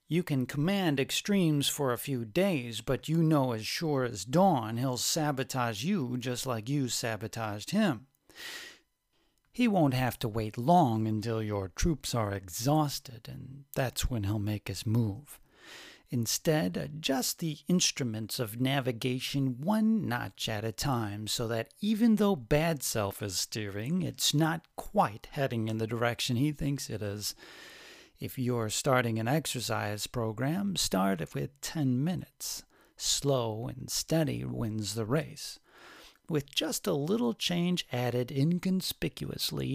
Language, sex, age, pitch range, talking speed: English, male, 40-59, 110-155 Hz, 145 wpm